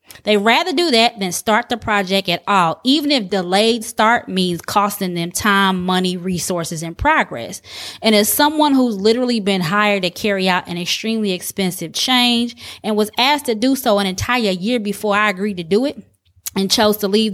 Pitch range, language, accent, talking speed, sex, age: 190-240 Hz, English, American, 190 wpm, female, 20-39